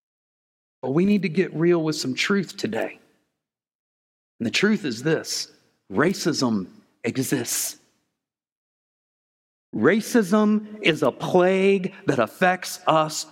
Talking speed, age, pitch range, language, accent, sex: 110 wpm, 40-59, 180-230 Hz, English, American, male